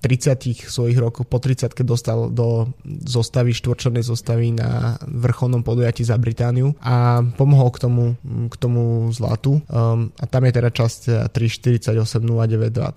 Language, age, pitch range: Slovak, 20-39, 115-125 Hz